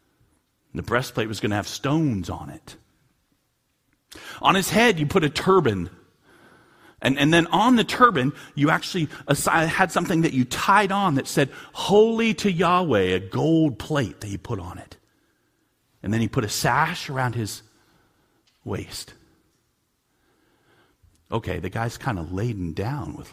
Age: 40-59